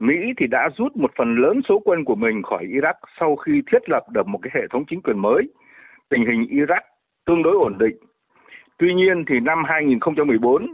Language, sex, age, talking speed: Vietnamese, male, 60-79, 205 wpm